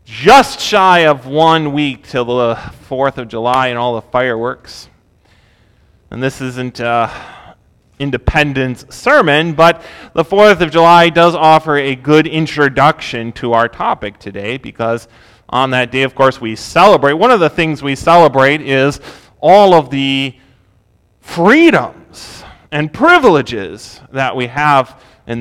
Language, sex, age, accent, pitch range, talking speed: English, male, 30-49, American, 115-160 Hz, 140 wpm